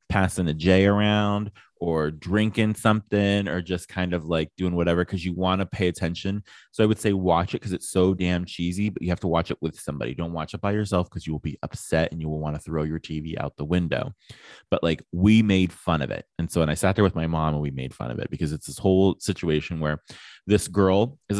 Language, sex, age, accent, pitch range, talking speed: English, male, 20-39, American, 80-95 Hz, 255 wpm